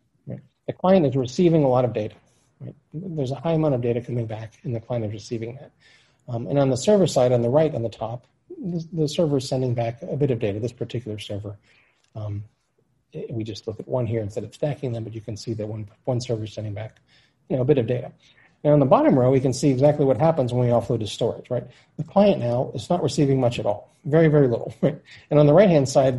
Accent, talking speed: American, 255 wpm